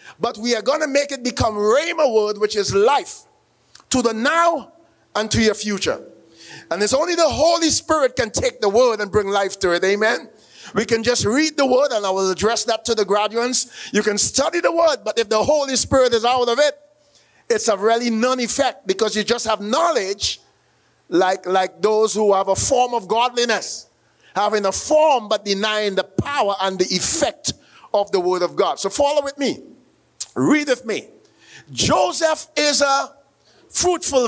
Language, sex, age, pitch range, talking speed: English, male, 50-69, 210-295 Hz, 190 wpm